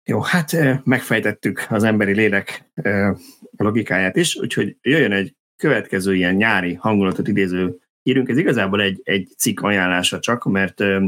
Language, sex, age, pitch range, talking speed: Hungarian, male, 30-49, 95-120 Hz, 135 wpm